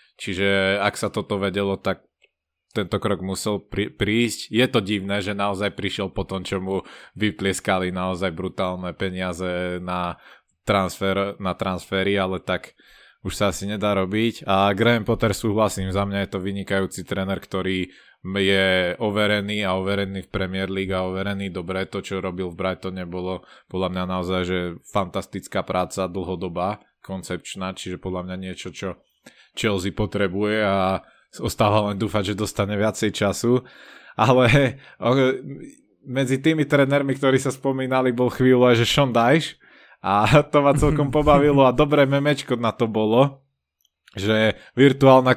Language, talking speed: Slovak, 145 wpm